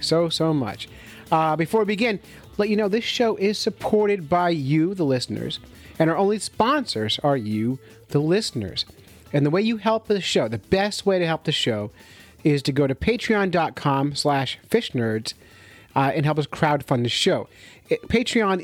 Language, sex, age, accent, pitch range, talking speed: English, male, 30-49, American, 125-175 Hz, 175 wpm